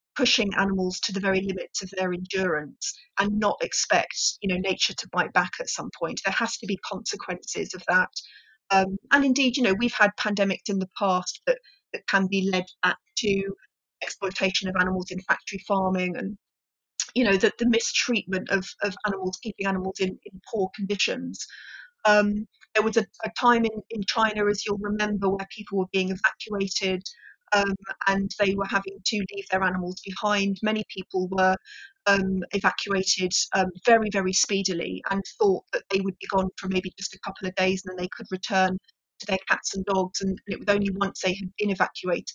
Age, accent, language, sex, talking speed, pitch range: 40-59, British, English, female, 195 wpm, 185-205 Hz